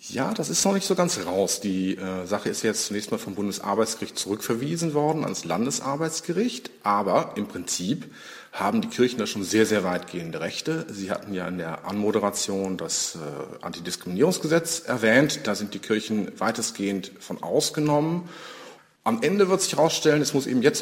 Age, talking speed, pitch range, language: 40-59, 170 wpm, 105-150 Hz, German